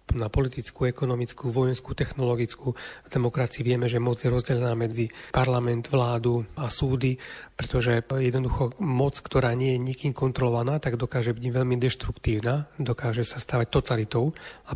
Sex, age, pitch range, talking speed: male, 40-59, 125-150 Hz, 140 wpm